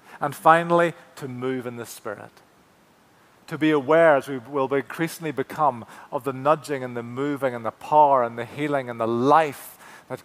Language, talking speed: English, 180 wpm